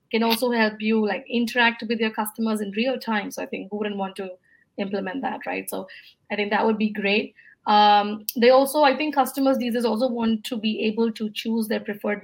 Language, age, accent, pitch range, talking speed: English, 30-49, Indian, 195-230 Hz, 220 wpm